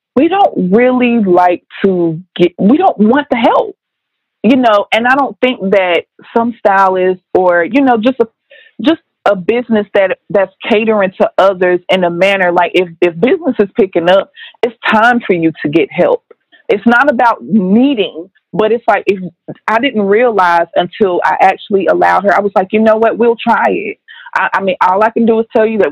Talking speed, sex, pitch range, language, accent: 195 wpm, female, 190-245 Hz, English, American